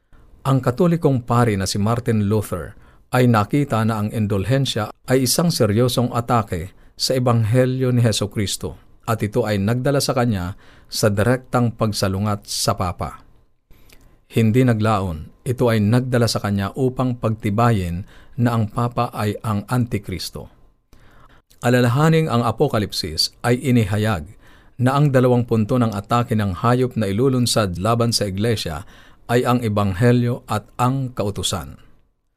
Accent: native